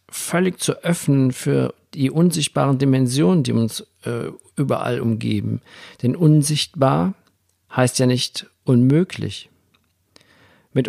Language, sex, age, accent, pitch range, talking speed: German, male, 50-69, German, 105-145 Hz, 105 wpm